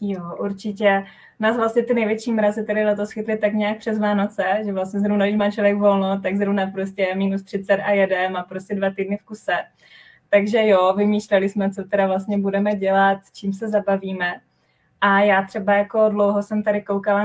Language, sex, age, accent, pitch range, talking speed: Czech, female, 20-39, native, 190-205 Hz, 190 wpm